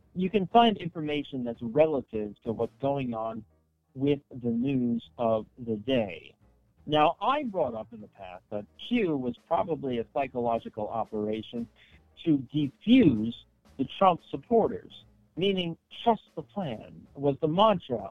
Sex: male